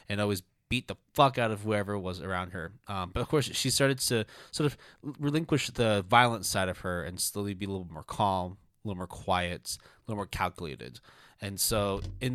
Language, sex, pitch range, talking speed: English, male, 100-125 Hz, 215 wpm